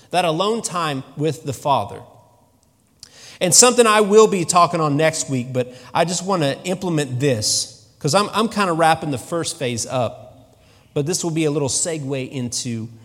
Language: English